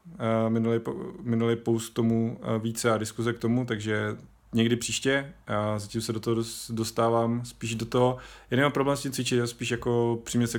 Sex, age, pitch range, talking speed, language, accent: male, 30-49, 105-120 Hz, 175 wpm, Czech, native